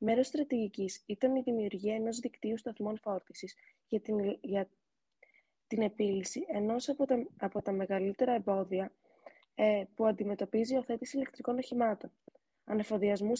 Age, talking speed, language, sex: 20-39, 130 wpm, Greek, female